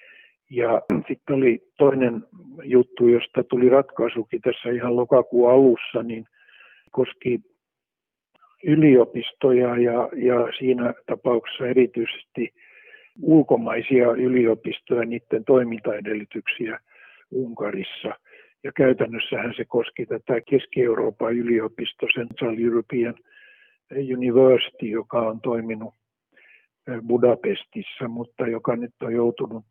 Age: 60-79